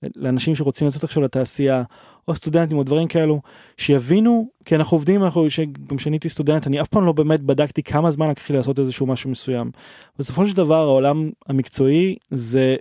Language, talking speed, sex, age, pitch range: Hebrew, 170 wpm, male, 20-39, 130-160 Hz